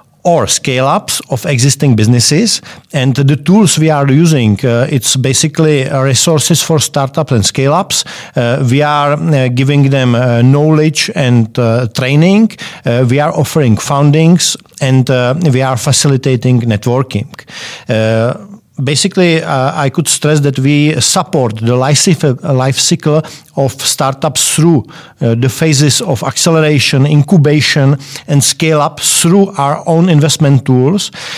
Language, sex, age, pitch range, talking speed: English, male, 50-69, 130-155 Hz, 130 wpm